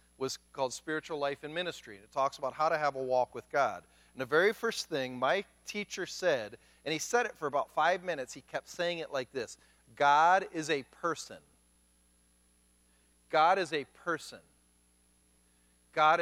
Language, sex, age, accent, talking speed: English, male, 40-59, American, 175 wpm